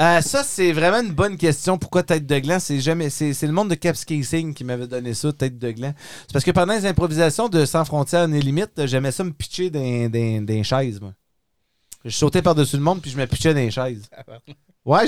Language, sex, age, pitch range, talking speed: French, male, 30-49, 125-175 Hz, 225 wpm